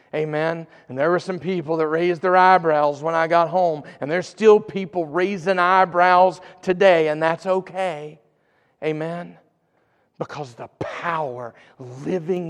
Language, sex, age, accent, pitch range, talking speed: English, male, 40-59, American, 145-185 Hz, 140 wpm